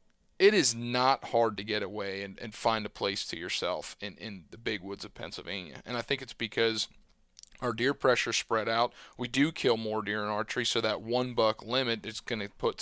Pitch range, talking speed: 105-125 Hz, 220 wpm